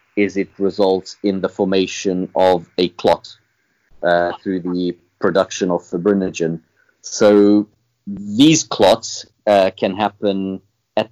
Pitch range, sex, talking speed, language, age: 95-110 Hz, male, 120 wpm, English, 30-49